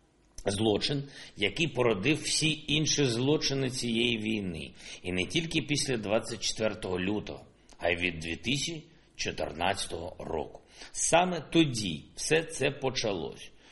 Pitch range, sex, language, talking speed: 100-140 Hz, male, Ukrainian, 105 wpm